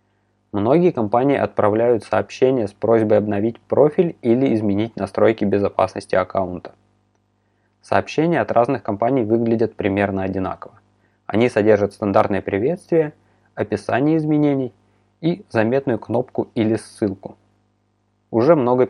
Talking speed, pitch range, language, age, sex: 105 wpm, 100-115 Hz, Russian, 20-39, male